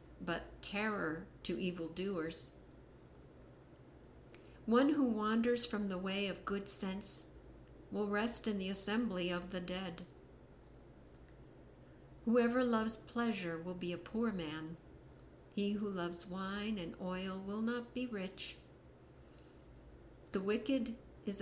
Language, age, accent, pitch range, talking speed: English, 60-79, American, 170-215 Hz, 120 wpm